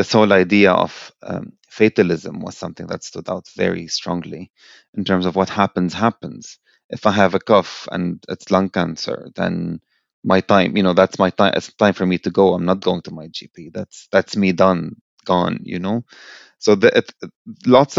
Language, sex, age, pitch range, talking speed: English, male, 30-49, 95-115 Hz, 190 wpm